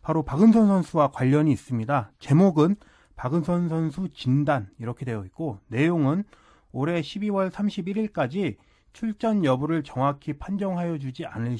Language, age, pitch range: Korean, 30-49, 140-205 Hz